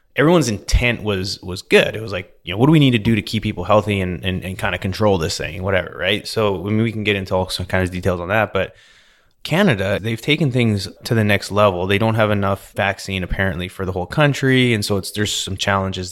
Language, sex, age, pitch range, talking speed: English, male, 20-39, 95-110 Hz, 255 wpm